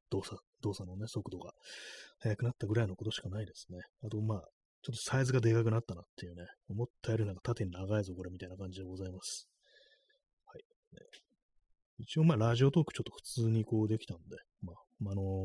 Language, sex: Japanese, male